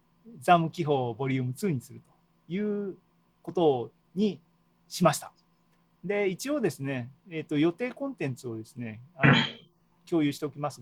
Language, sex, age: Japanese, male, 40-59